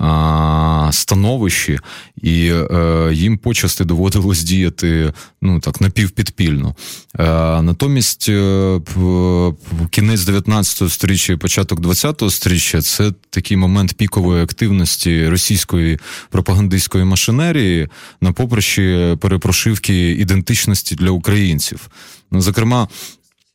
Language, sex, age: Ukrainian, male, 20-39